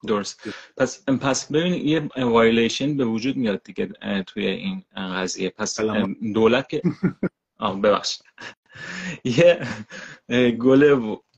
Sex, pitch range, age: male, 110-135 Hz, 30-49